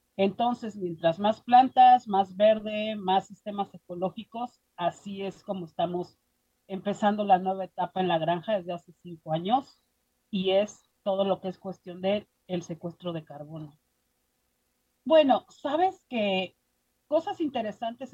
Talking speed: 135 wpm